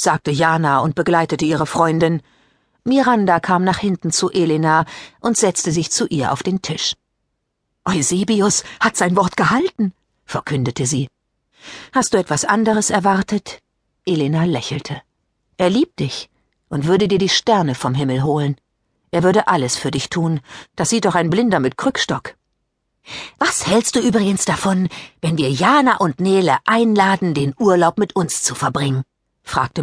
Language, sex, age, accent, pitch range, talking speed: German, female, 50-69, German, 155-210 Hz, 155 wpm